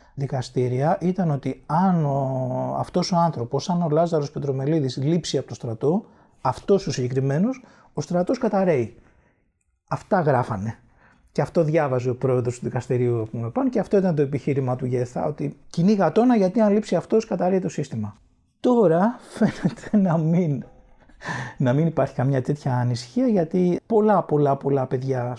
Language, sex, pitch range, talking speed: Greek, male, 130-175 Hz, 155 wpm